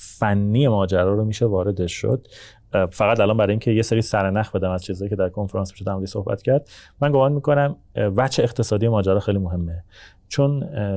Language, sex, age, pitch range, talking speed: Persian, male, 30-49, 95-110 Hz, 175 wpm